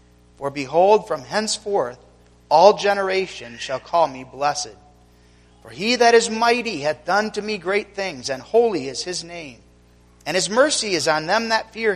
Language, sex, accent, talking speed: English, male, American, 170 wpm